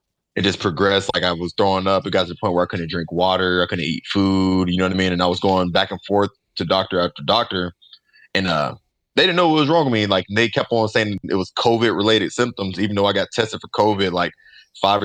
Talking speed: 265 wpm